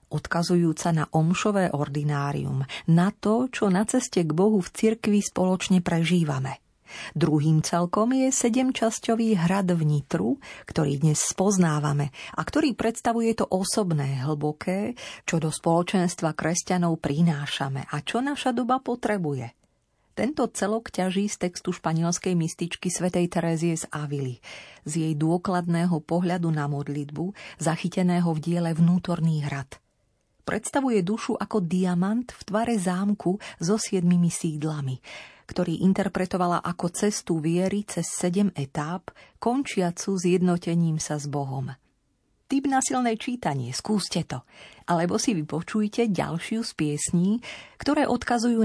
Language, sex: Slovak, female